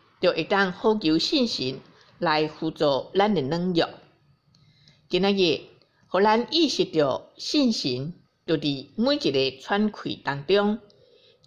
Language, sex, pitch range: Chinese, female, 145-205 Hz